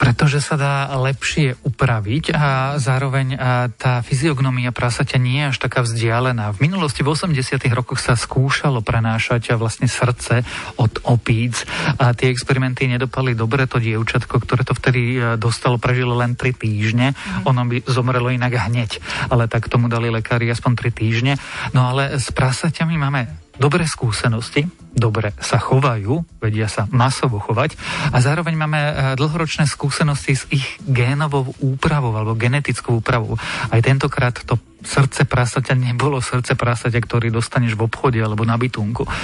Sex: male